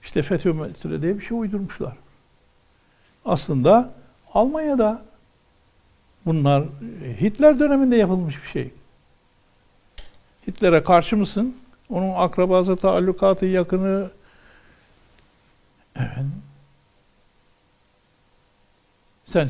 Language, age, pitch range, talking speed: Turkish, 60-79, 145-230 Hz, 75 wpm